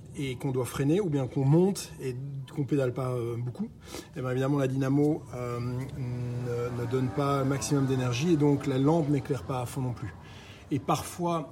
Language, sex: French, male